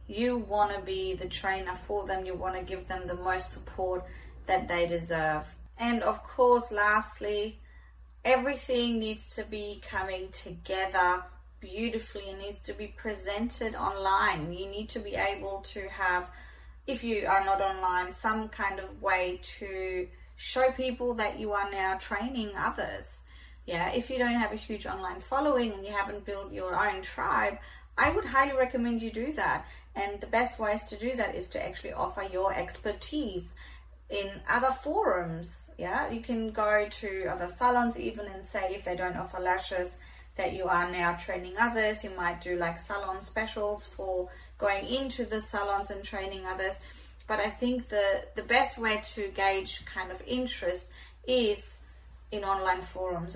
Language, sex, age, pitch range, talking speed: English, female, 30-49, 185-220 Hz, 170 wpm